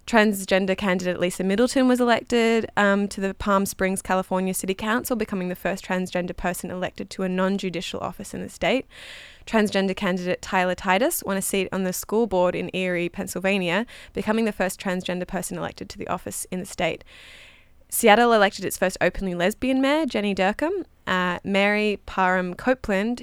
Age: 20-39